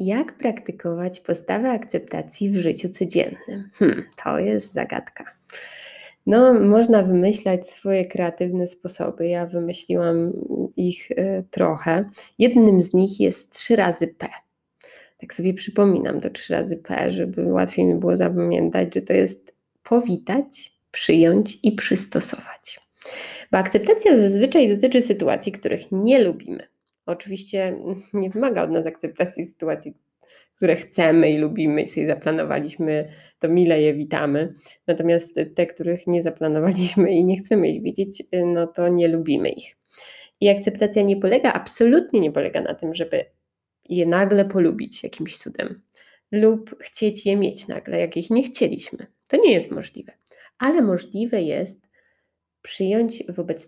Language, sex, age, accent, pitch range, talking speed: Polish, female, 20-39, native, 170-210 Hz, 135 wpm